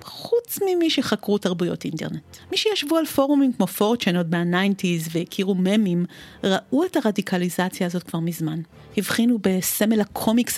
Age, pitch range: 40-59, 185-225 Hz